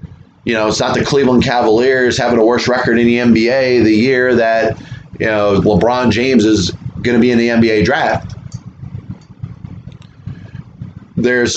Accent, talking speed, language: American, 155 wpm, English